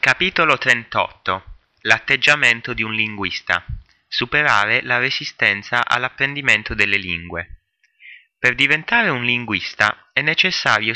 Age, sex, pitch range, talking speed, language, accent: 30-49, male, 110-140 Hz, 100 wpm, Italian, native